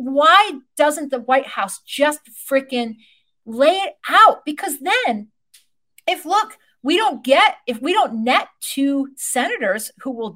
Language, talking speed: English, 145 wpm